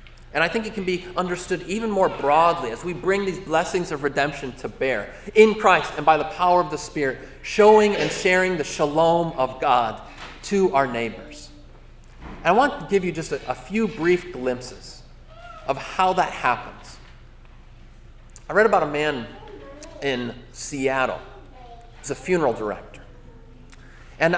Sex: male